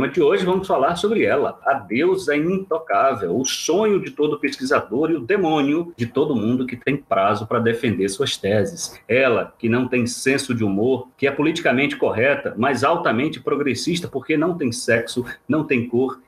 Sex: male